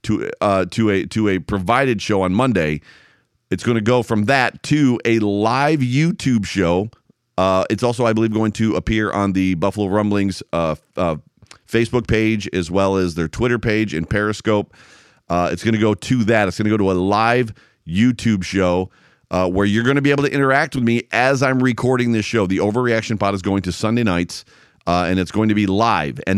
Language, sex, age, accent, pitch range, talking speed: English, male, 40-59, American, 95-120 Hz, 210 wpm